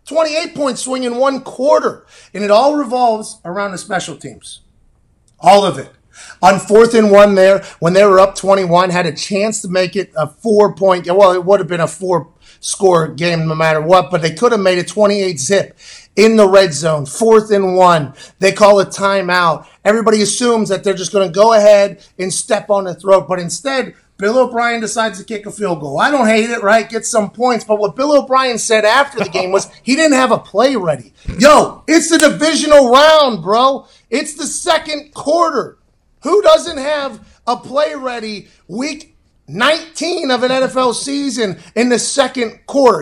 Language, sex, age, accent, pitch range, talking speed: English, male, 30-49, American, 190-260 Hz, 190 wpm